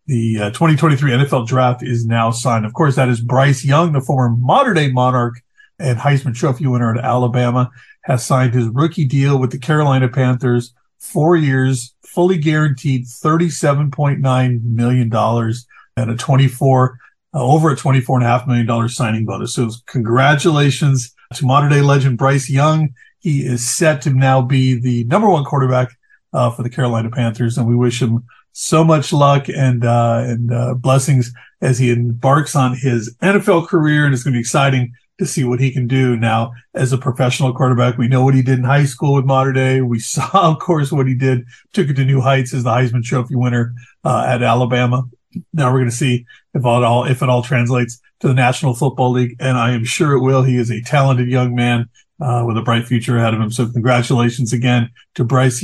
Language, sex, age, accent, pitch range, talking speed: English, male, 40-59, American, 120-140 Hz, 205 wpm